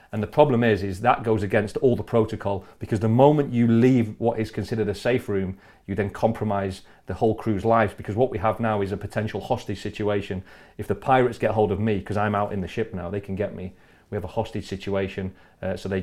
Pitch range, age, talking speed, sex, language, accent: 100-115 Hz, 40-59, 245 wpm, male, English, British